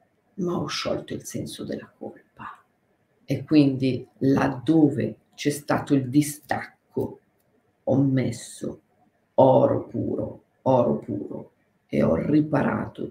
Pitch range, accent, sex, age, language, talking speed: 140-185 Hz, native, female, 50-69, Italian, 105 wpm